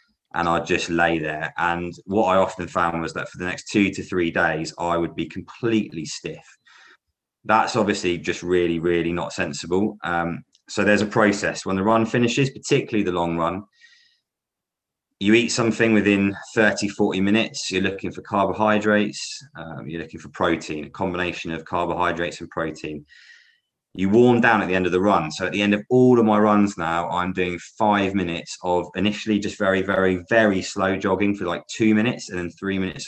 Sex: male